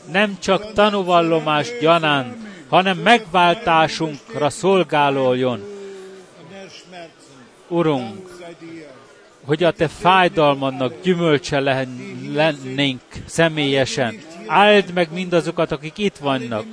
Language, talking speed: Hungarian, 75 wpm